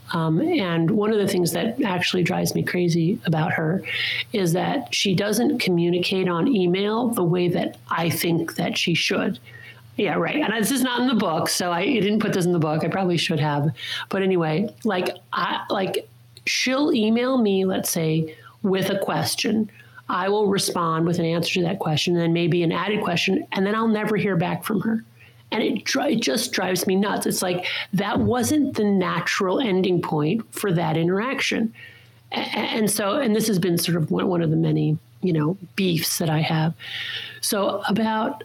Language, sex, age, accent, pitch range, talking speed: English, male, 50-69, American, 165-210 Hz, 195 wpm